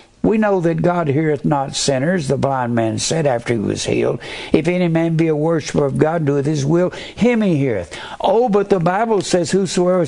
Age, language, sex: 60-79, English, male